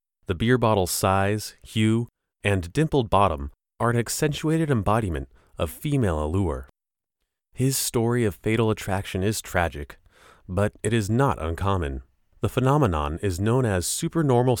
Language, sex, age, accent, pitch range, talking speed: English, male, 30-49, American, 85-130 Hz, 135 wpm